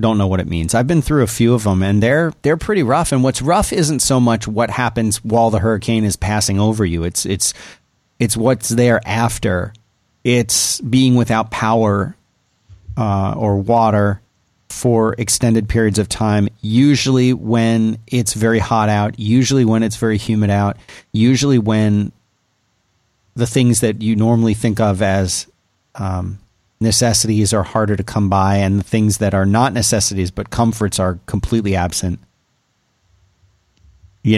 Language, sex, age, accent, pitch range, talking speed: English, male, 40-59, American, 100-120 Hz, 160 wpm